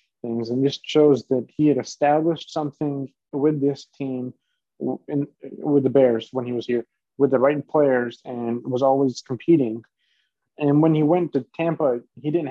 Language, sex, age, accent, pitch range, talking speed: English, male, 20-39, American, 120-140 Hz, 175 wpm